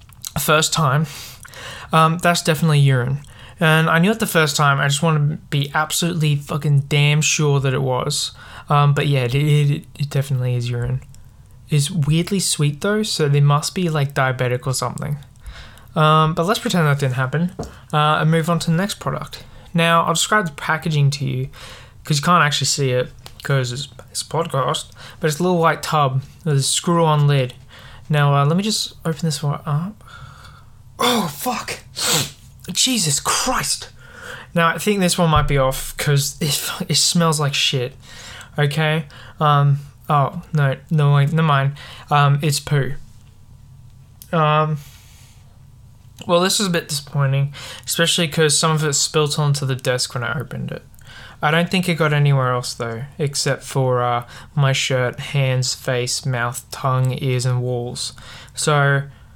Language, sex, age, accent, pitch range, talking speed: English, male, 20-39, Australian, 130-155 Hz, 170 wpm